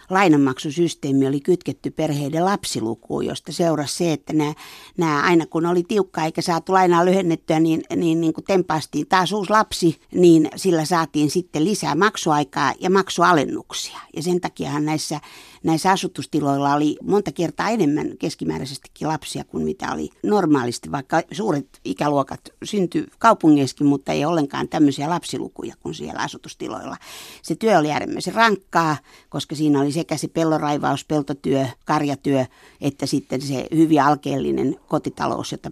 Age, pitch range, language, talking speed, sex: 60-79, 145-170 Hz, Finnish, 140 wpm, female